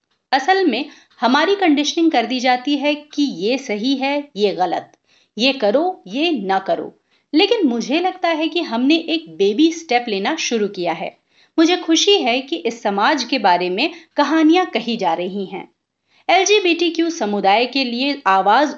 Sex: female